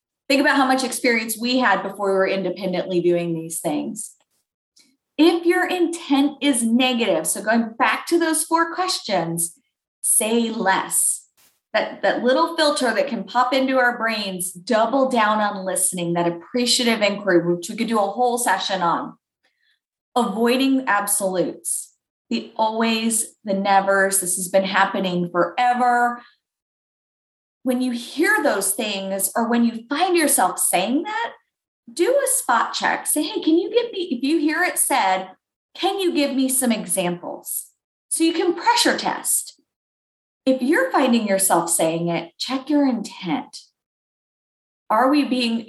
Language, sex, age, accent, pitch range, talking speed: English, female, 30-49, American, 195-270 Hz, 150 wpm